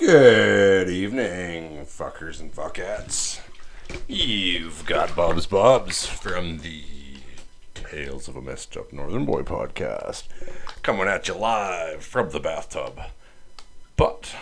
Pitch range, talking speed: 70-90 Hz, 110 wpm